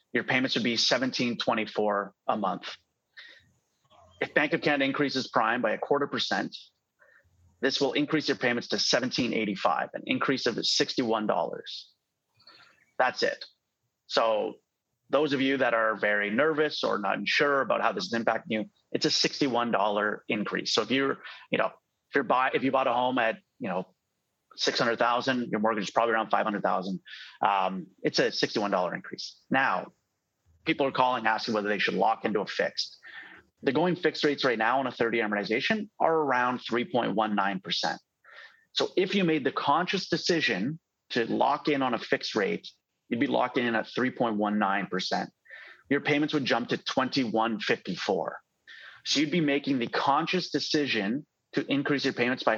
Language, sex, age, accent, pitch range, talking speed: English, male, 30-49, American, 110-145 Hz, 160 wpm